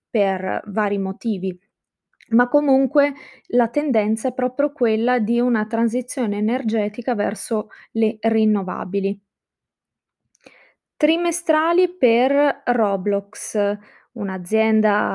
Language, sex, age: Italian, female, 20-39